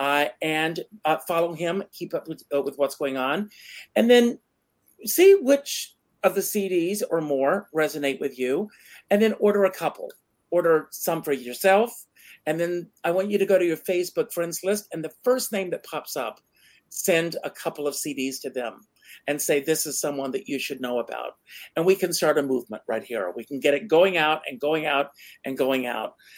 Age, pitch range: 50-69, 140-190 Hz